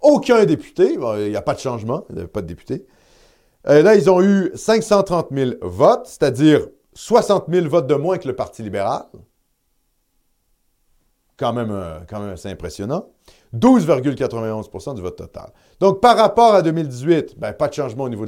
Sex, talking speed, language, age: male, 175 wpm, French, 40-59